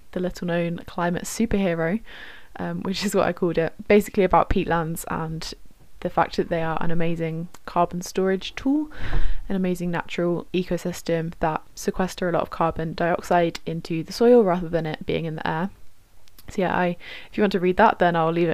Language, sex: English, female